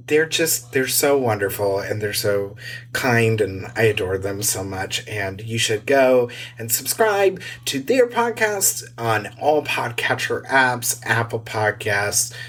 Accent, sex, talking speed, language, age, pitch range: American, male, 140 wpm, English, 30-49, 110-150 Hz